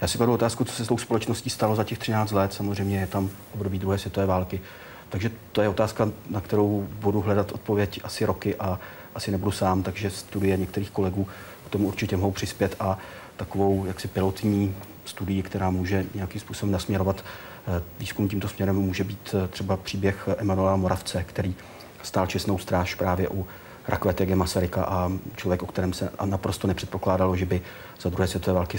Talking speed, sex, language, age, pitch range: 175 wpm, male, Czech, 40-59, 95-100 Hz